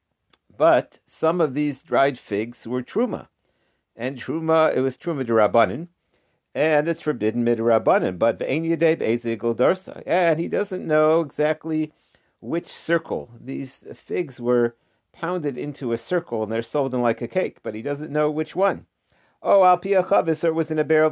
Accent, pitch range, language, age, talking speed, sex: American, 120-160 Hz, English, 50-69, 170 wpm, male